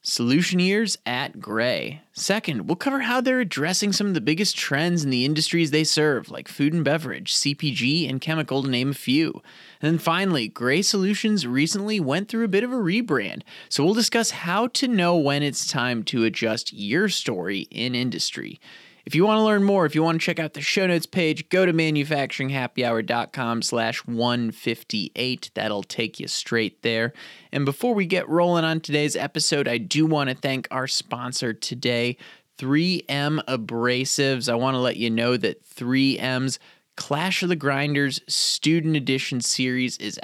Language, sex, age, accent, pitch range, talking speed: English, male, 20-39, American, 125-170 Hz, 175 wpm